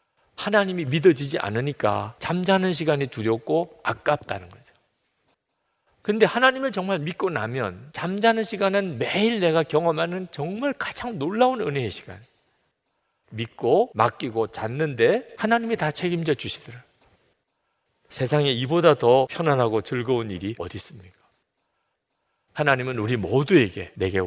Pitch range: 115-180 Hz